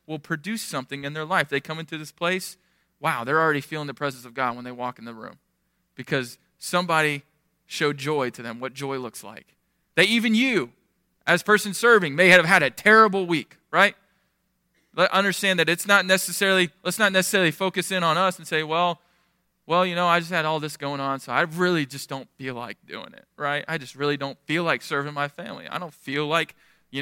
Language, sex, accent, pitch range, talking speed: English, male, American, 145-185 Hz, 215 wpm